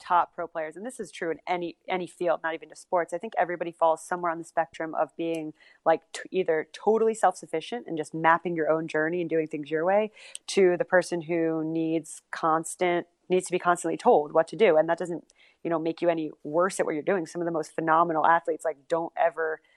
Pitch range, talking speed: 155-175 Hz, 235 wpm